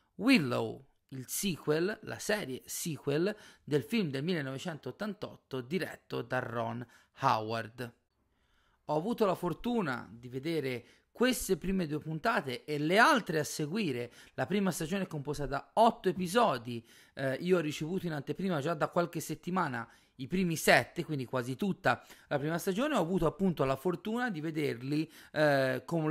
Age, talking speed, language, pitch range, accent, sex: 30-49, 150 wpm, Italian, 135-185 Hz, native, male